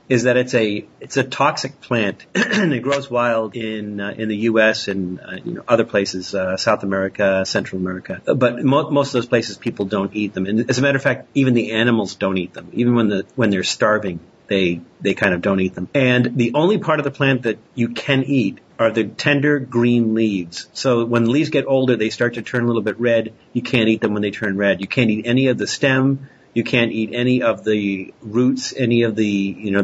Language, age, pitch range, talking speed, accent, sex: English, 40-59, 105-125 Hz, 240 wpm, American, male